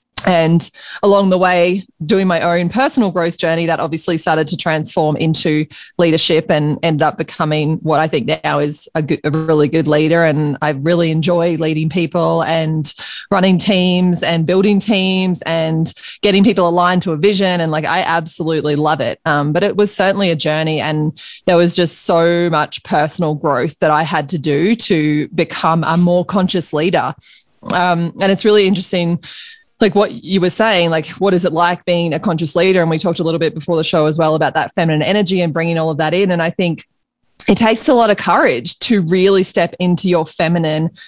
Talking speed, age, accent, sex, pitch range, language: 200 wpm, 20-39, Australian, female, 160-185 Hz, English